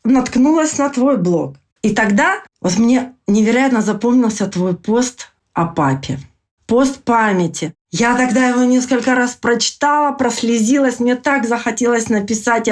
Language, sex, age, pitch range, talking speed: Russian, female, 40-59, 185-240 Hz, 125 wpm